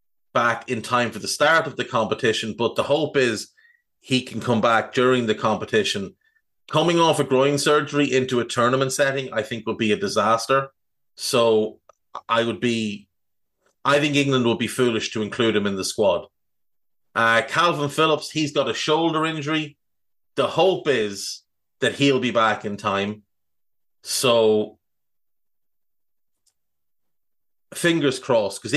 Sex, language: male, English